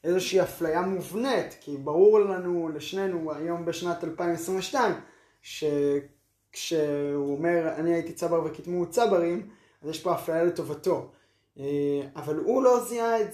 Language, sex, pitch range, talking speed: Hebrew, male, 145-180 Hz, 115 wpm